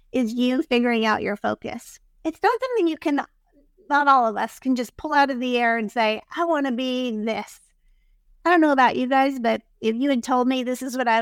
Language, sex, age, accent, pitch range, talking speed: English, female, 30-49, American, 240-285 Hz, 240 wpm